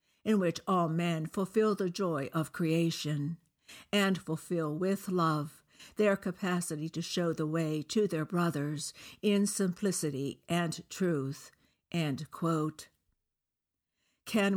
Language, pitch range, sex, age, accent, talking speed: English, 155-185 Hz, female, 60-79, American, 115 wpm